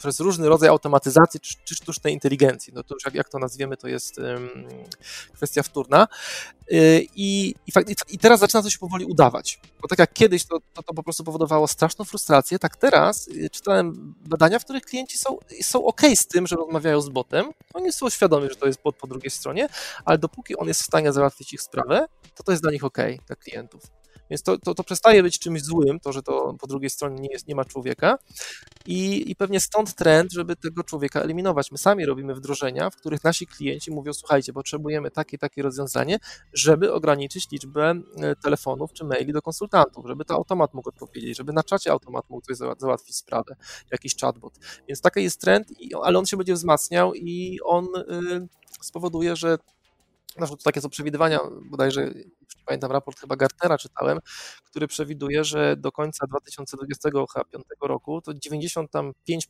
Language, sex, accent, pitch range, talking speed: Polish, male, native, 140-175 Hz, 185 wpm